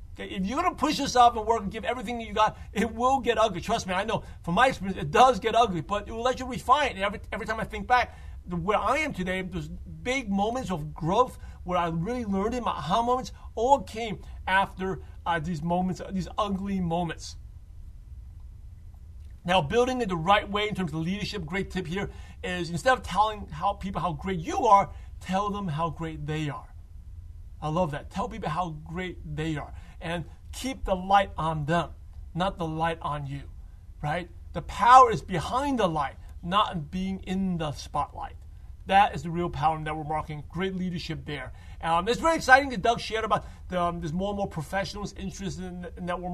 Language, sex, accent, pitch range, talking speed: English, male, American, 170-230 Hz, 205 wpm